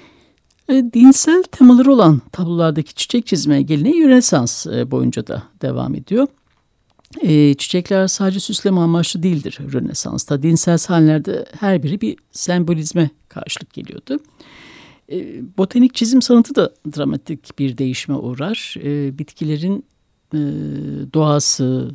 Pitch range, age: 145-200 Hz, 60-79